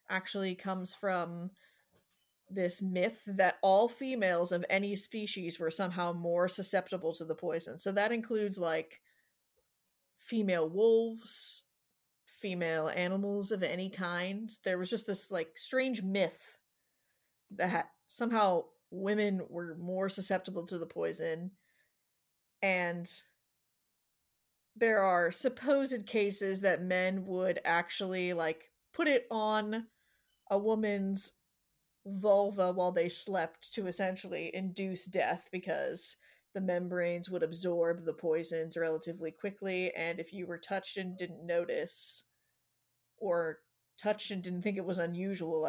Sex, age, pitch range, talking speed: female, 30-49, 165-200 Hz, 120 wpm